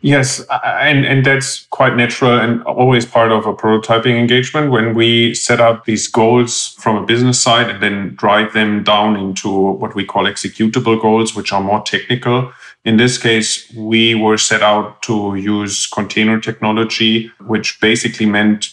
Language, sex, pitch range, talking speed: English, male, 105-115 Hz, 165 wpm